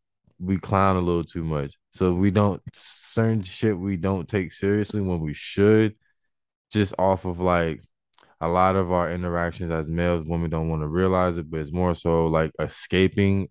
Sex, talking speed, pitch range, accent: male, 180 wpm, 80-100 Hz, American